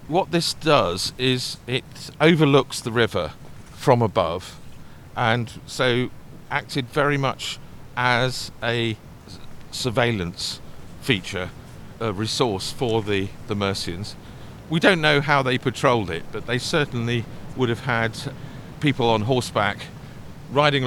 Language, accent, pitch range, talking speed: English, British, 110-145 Hz, 120 wpm